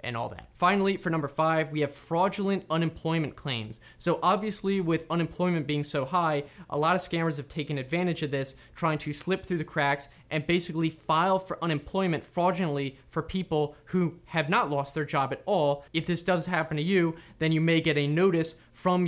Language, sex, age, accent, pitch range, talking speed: English, male, 20-39, American, 135-165 Hz, 195 wpm